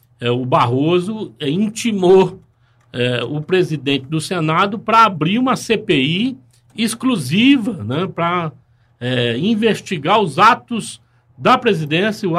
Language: Portuguese